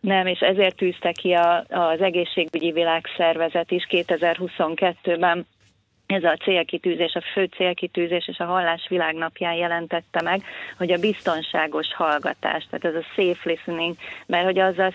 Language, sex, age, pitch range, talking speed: Hungarian, female, 30-49, 160-180 Hz, 135 wpm